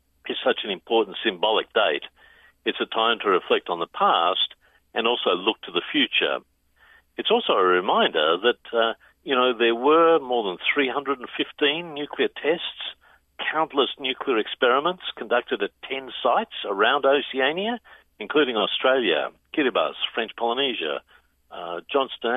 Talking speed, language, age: 135 wpm, English, 50-69